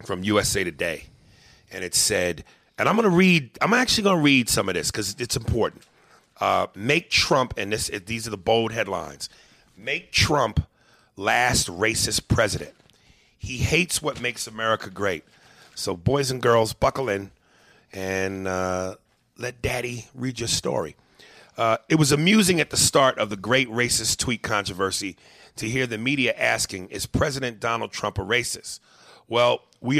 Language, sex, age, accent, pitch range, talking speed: English, male, 40-59, American, 105-130 Hz, 165 wpm